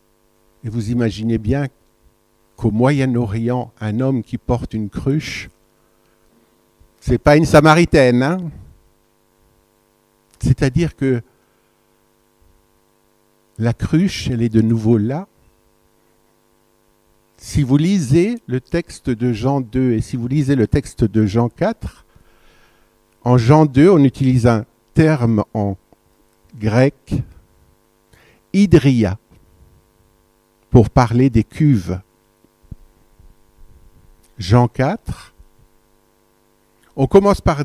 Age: 50-69